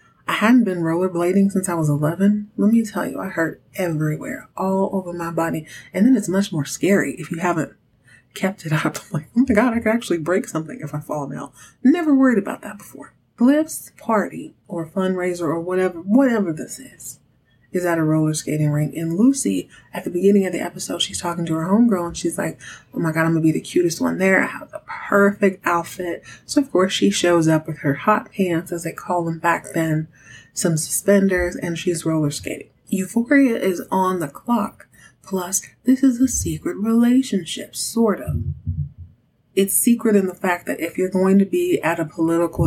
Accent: American